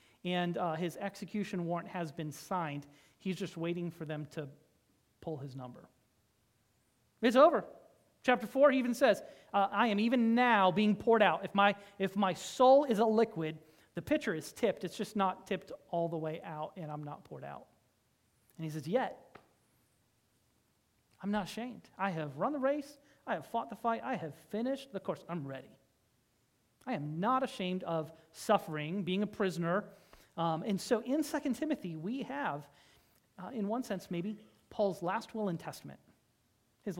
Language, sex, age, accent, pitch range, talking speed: English, male, 30-49, American, 160-215 Hz, 175 wpm